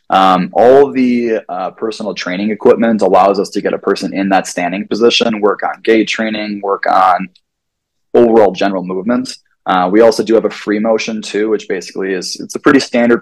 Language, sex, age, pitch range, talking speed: English, male, 20-39, 100-115 Hz, 190 wpm